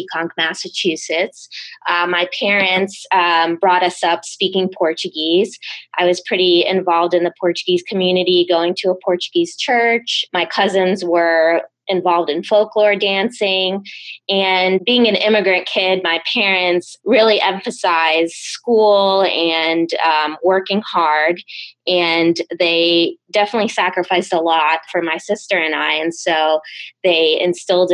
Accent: American